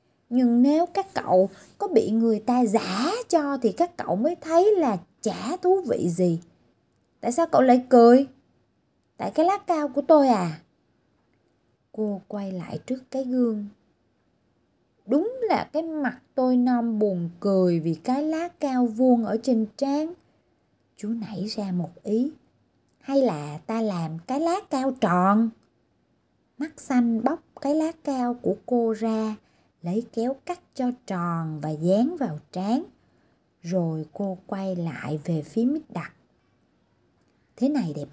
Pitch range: 180-265 Hz